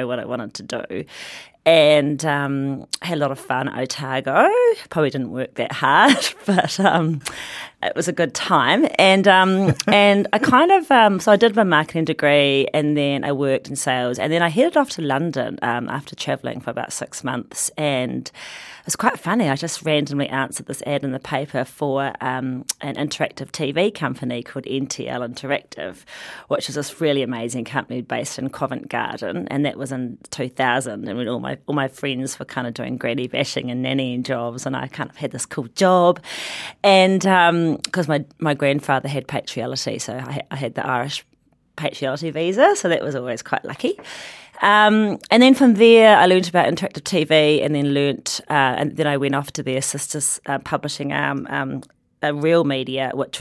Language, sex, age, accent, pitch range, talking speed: English, female, 30-49, Australian, 135-170 Hz, 195 wpm